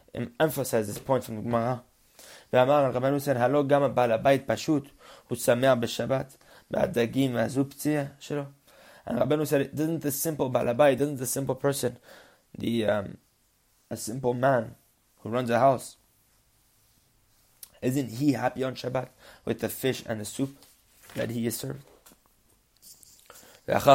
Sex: male